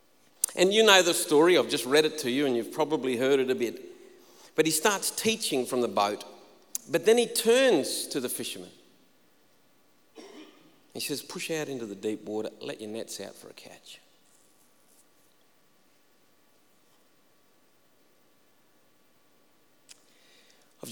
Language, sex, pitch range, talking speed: English, male, 110-140 Hz, 140 wpm